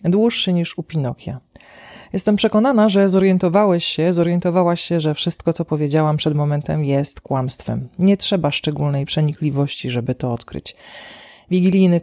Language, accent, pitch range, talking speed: Polish, native, 145-180 Hz, 135 wpm